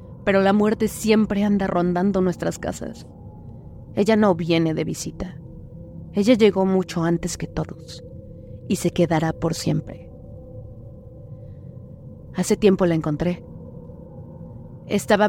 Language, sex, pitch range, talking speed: Spanish, female, 160-200 Hz, 115 wpm